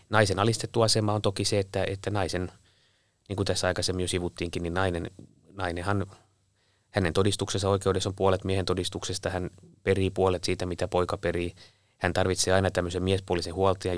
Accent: native